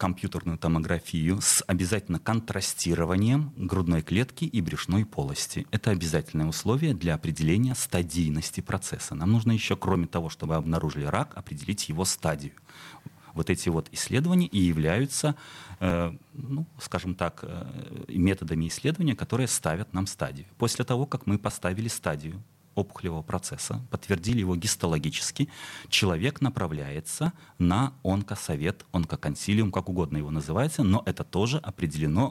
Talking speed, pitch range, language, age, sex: 125 wpm, 85-125 Hz, Russian, 30-49, male